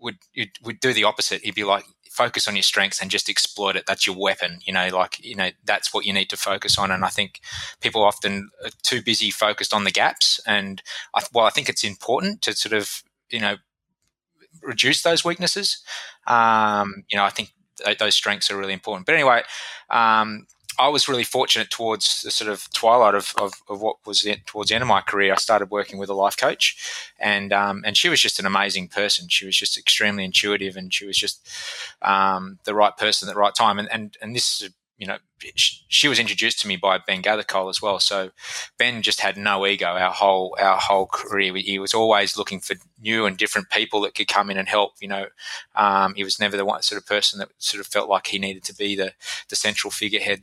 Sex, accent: male, Australian